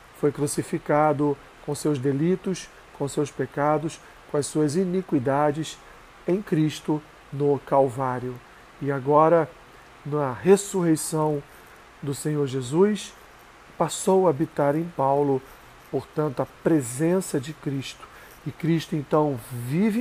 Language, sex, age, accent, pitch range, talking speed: Portuguese, male, 40-59, Brazilian, 140-160 Hz, 110 wpm